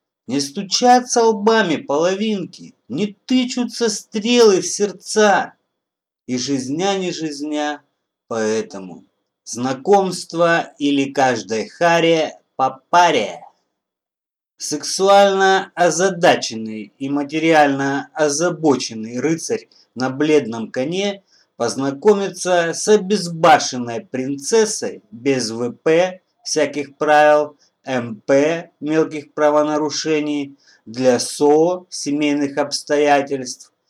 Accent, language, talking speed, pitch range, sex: native, Russian, 80 wpm, 130-180 Hz, male